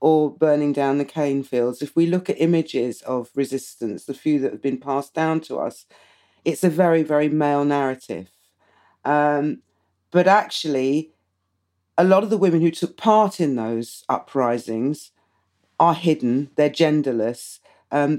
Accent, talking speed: British, 155 wpm